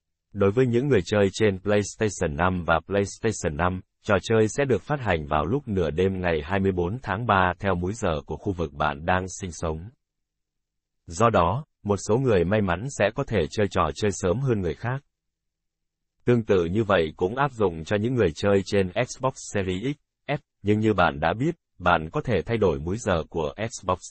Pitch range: 85-110 Hz